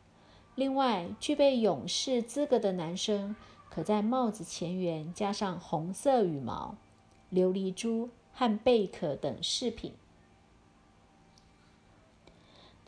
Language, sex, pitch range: Chinese, female, 170-225 Hz